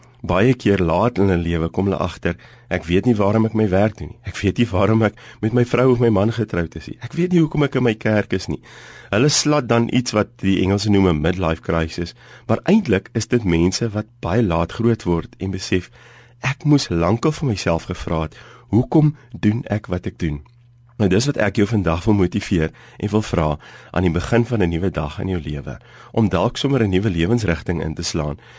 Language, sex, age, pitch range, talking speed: English, male, 40-59, 85-120 Hz, 225 wpm